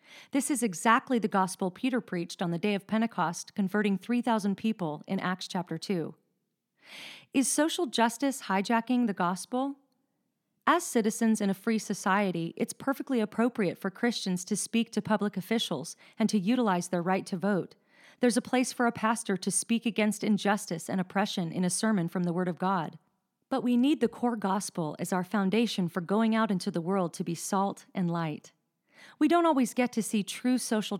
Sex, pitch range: female, 185-230 Hz